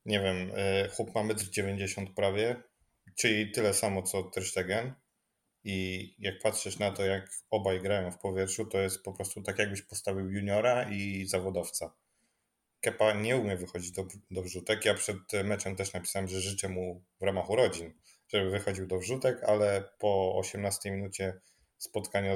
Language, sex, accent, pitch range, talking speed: Polish, male, native, 95-115 Hz, 160 wpm